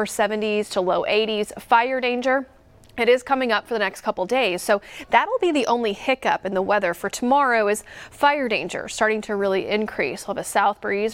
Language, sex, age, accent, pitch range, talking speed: English, female, 30-49, American, 200-245 Hz, 210 wpm